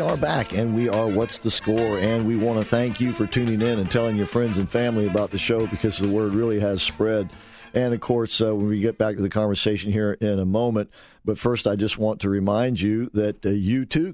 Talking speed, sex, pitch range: 255 wpm, male, 100-120 Hz